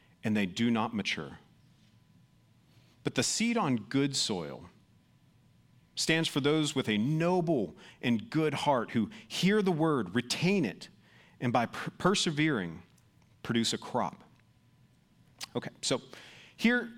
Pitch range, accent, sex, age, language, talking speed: 130-180 Hz, American, male, 40-59, English, 125 wpm